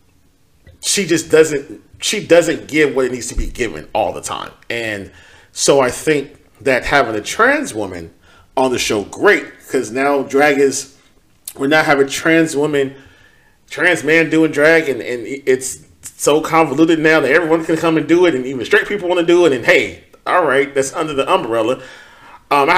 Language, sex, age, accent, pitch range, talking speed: English, male, 40-59, American, 110-165 Hz, 190 wpm